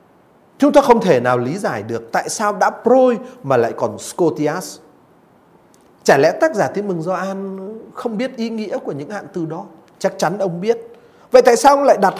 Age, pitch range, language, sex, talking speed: 30-49, 185-265 Hz, Vietnamese, male, 205 wpm